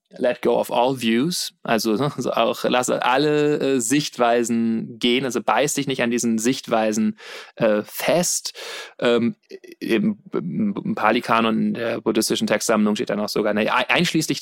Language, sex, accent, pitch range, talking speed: German, male, German, 115-135 Hz, 150 wpm